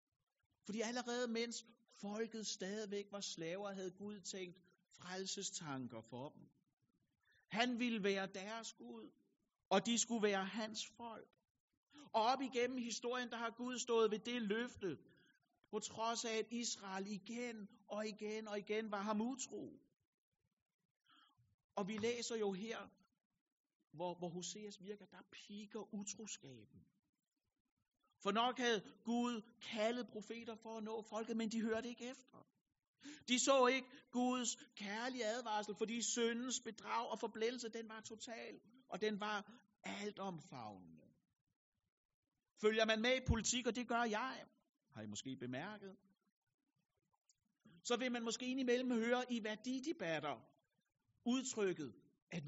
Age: 60-79